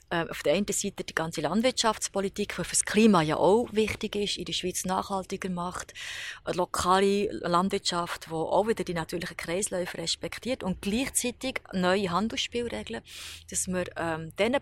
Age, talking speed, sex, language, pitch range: 30-49, 155 wpm, female, German, 170-205 Hz